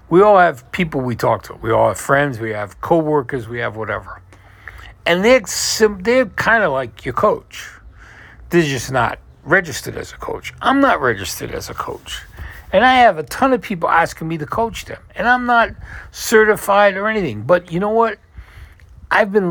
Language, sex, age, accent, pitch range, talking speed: English, male, 60-79, American, 115-180 Hz, 195 wpm